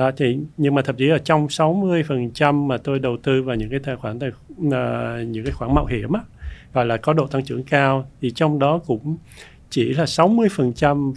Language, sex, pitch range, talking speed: Vietnamese, male, 120-145 Hz, 215 wpm